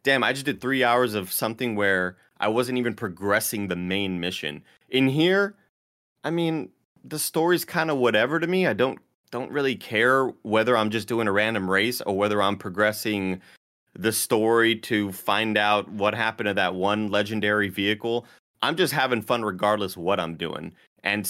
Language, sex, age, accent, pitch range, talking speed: English, male, 30-49, American, 100-115 Hz, 180 wpm